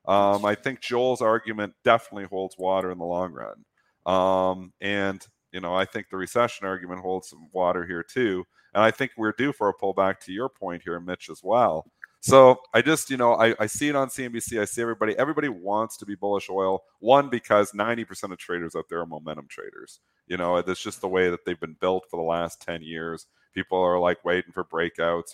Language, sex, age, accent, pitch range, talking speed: English, male, 40-59, American, 90-115 Hz, 220 wpm